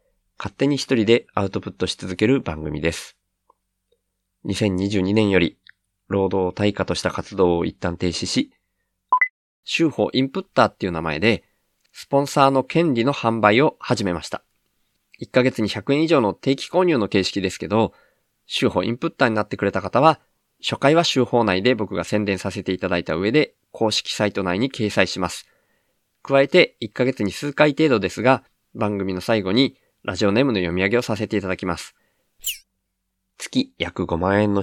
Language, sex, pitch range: Japanese, male, 95-135 Hz